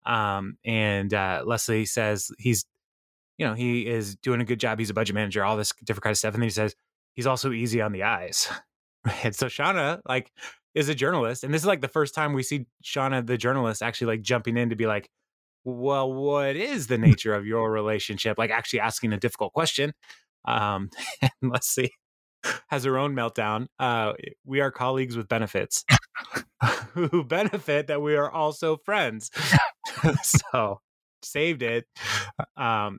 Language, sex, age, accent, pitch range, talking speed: English, male, 20-39, American, 110-140 Hz, 180 wpm